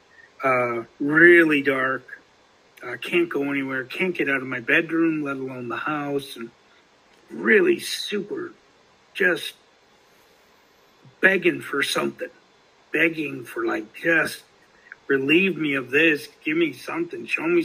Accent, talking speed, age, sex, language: American, 125 wpm, 50-69, male, English